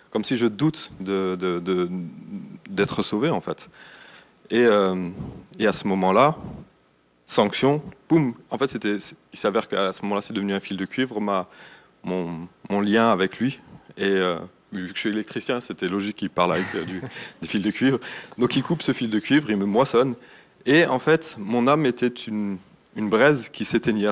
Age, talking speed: 30-49, 190 wpm